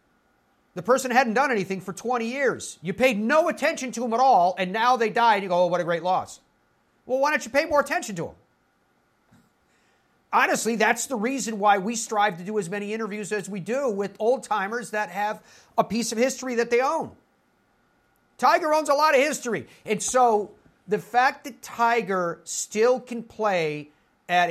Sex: male